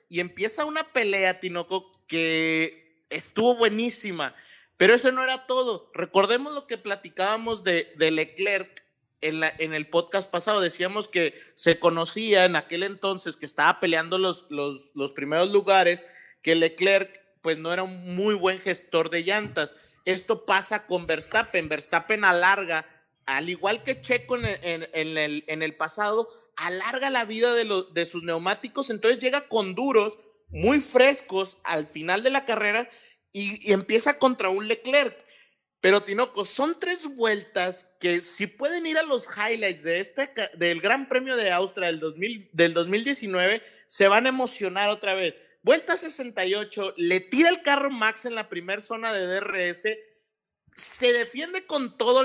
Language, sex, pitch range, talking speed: Spanish, male, 175-245 Hz, 155 wpm